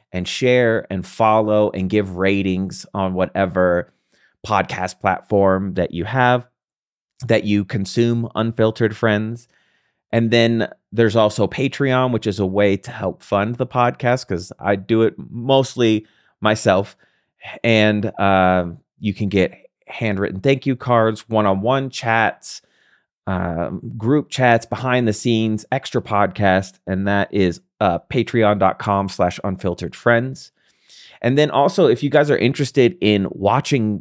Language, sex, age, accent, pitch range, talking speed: English, male, 30-49, American, 95-120 Hz, 135 wpm